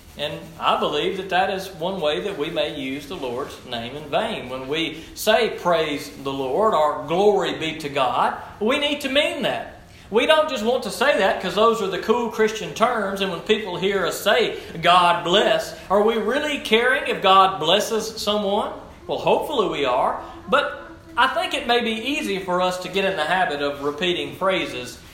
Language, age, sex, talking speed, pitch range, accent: English, 40-59, male, 200 wpm, 145-200 Hz, American